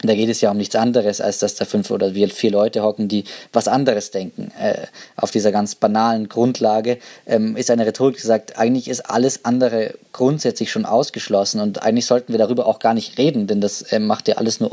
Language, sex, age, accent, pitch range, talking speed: German, male, 20-39, German, 105-125 Hz, 205 wpm